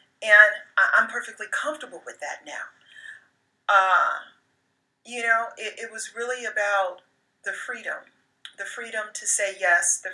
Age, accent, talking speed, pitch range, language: 40-59, American, 135 wpm, 195-275 Hz, English